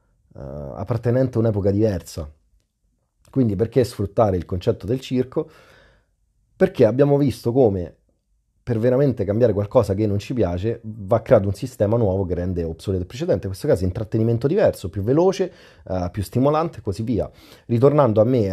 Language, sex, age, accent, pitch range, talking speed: Italian, male, 30-49, native, 90-125 Hz, 165 wpm